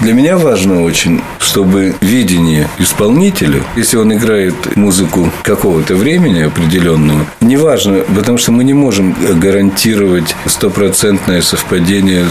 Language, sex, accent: Russian, male, native